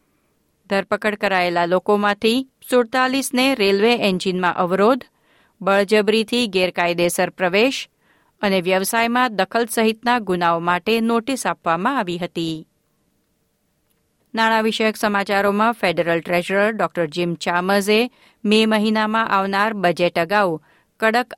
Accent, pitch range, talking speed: native, 175-225 Hz, 95 wpm